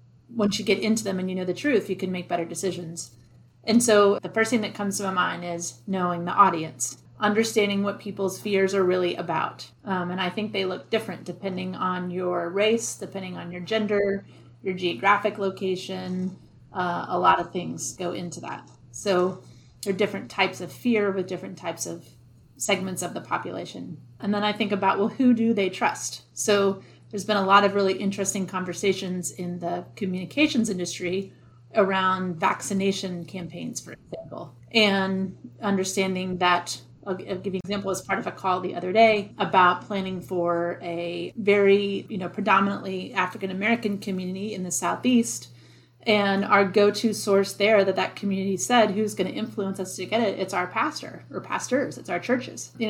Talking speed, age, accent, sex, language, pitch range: 180 wpm, 30-49, American, female, English, 180-205 Hz